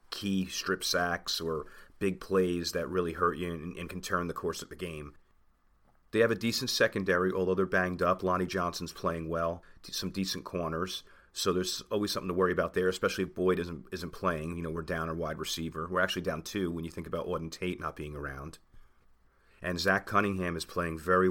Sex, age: male, 30-49